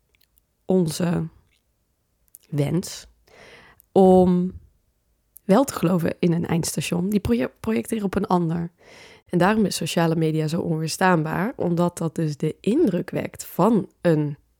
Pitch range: 155-175 Hz